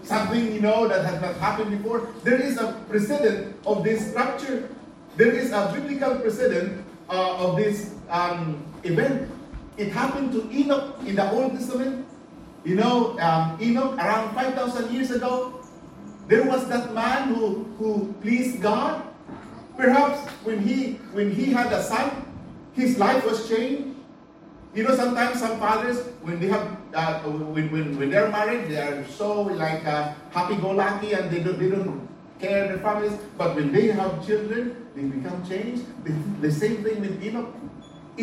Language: English